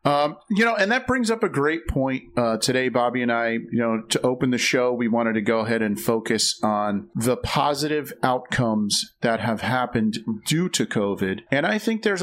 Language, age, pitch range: English, 40-59, 110-140 Hz